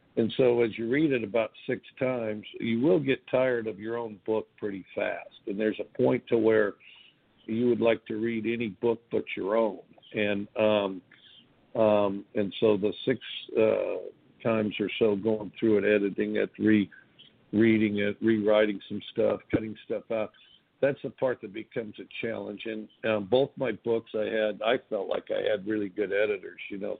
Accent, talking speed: American, 185 wpm